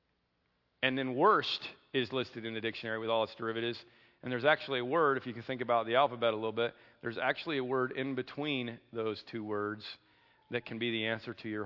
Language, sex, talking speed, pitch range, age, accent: English, male, 220 wpm, 115-165 Hz, 40-59, American